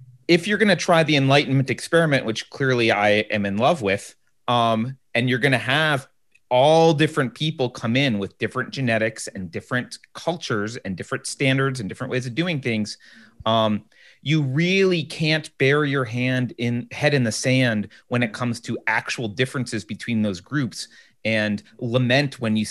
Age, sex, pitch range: 30-49, male, 110-145 Hz